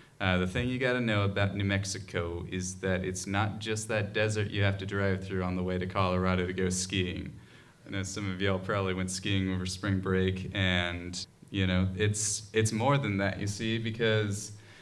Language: English